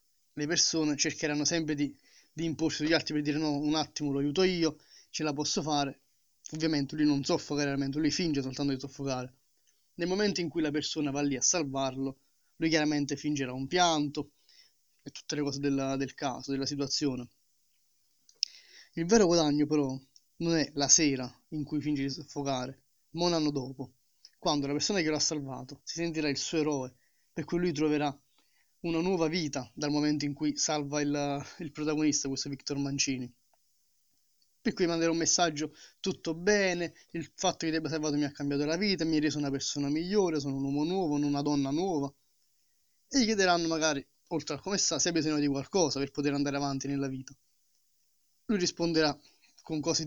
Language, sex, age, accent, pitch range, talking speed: Italian, male, 20-39, native, 140-160 Hz, 190 wpm